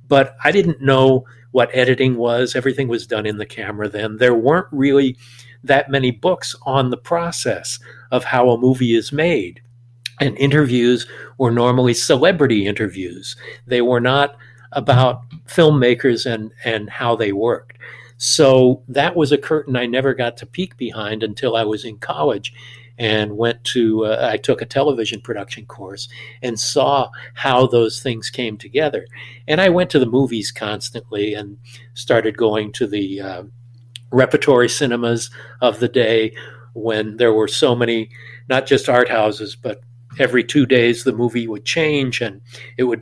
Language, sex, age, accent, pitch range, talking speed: English, male, 60-79, American, 115-130 Hz, 160 wpm